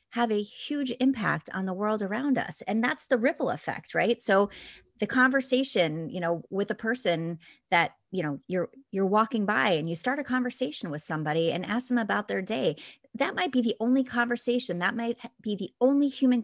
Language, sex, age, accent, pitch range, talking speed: English, female, 30-49, American, 170-240 Hz, 200 wpm